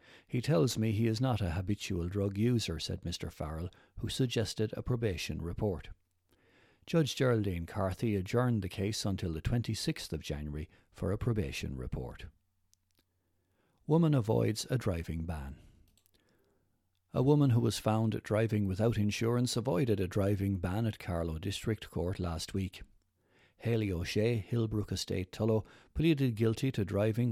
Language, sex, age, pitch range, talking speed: English, male, 60-79, 90-115 Hz, 145 wpm